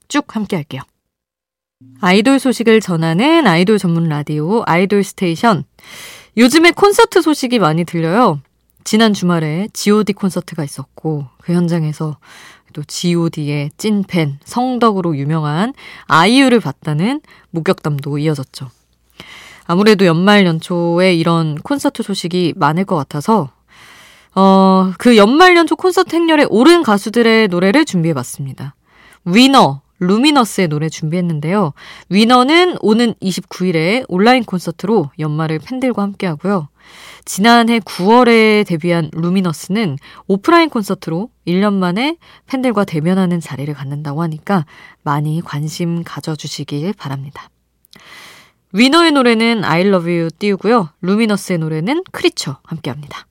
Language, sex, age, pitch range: Korean, female, 20-39, 155-225 Hz